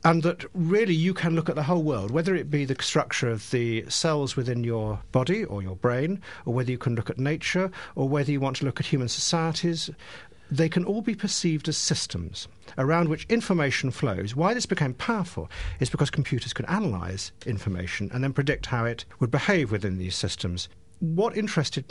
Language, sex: English, male